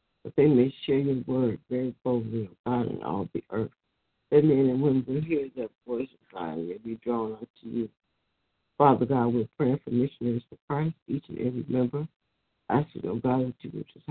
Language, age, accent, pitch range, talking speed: English, 60-79, American, 120-135 Hz, 220 wpm